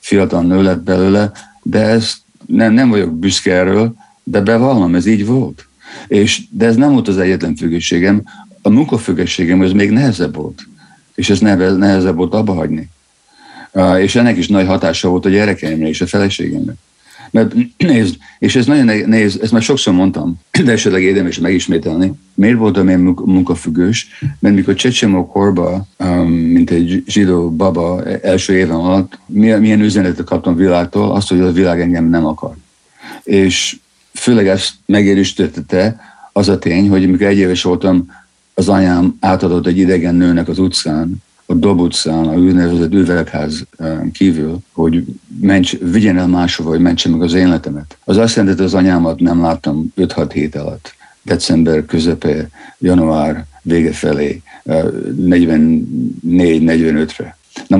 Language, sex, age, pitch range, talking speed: Hungarian, male, 50-69, 85-100 Hz, 145 wpm